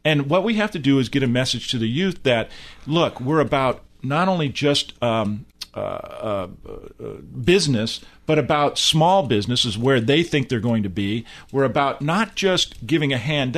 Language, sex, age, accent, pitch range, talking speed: English, male, 40-59, American, 120-160 Hz, 190 wpm